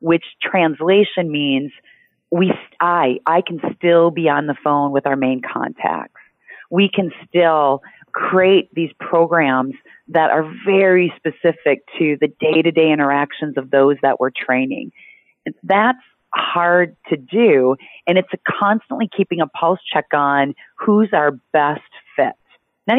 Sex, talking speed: female, 140 wpm